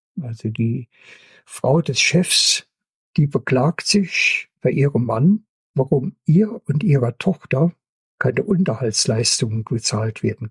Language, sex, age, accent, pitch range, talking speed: German, male, 60-79, German, 125-170 Hz, 115 wpm